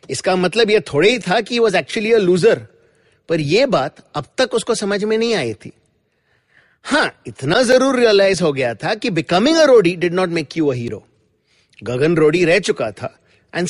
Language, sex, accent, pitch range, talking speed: English, male, Indian, 155-225 Hz, 130 wpm